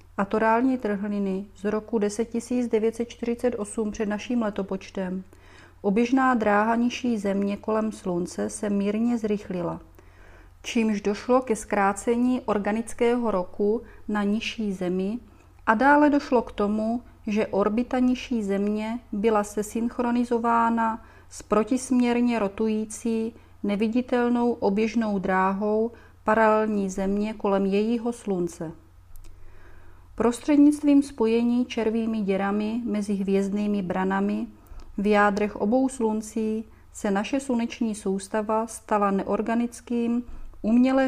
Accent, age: native, 30-49